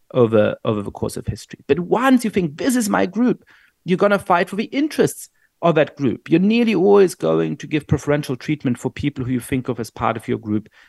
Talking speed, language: 235 wpm, English